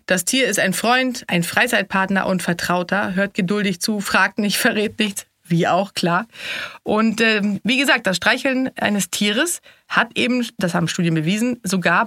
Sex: female